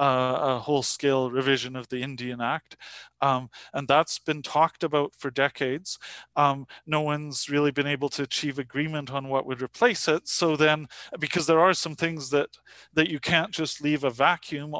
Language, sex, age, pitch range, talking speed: English, male, 30-49, 135-165 Hz, 185 wpm